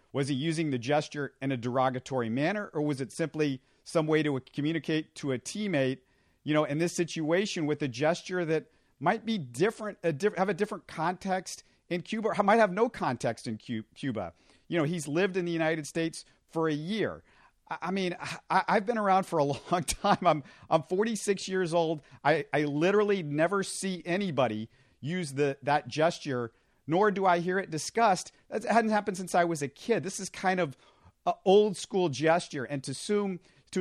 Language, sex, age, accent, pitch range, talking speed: English, male, 40-59, American, 140-190 Hz, 195 wpm